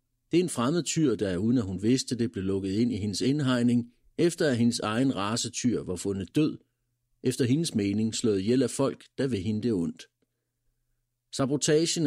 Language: Danish